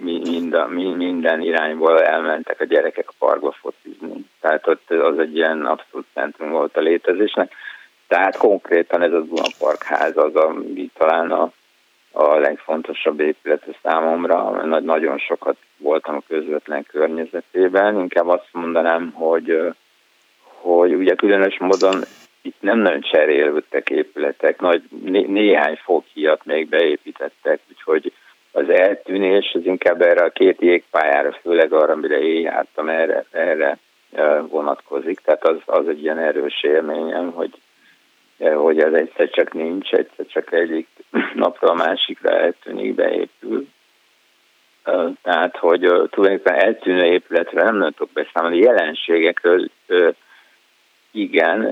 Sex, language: male, Hungarian